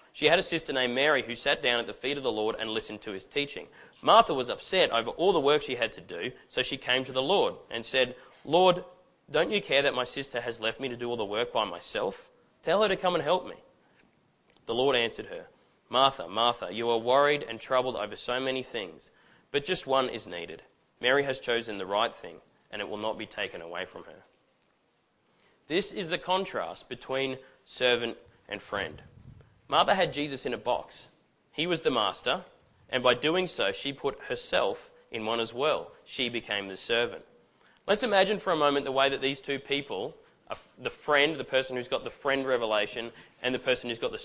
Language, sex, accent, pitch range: English, male, Australian, 125-180 Hz